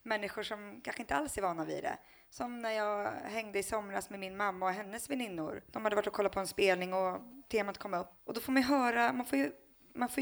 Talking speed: 260 wpm